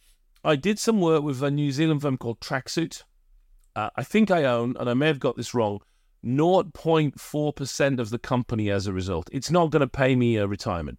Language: English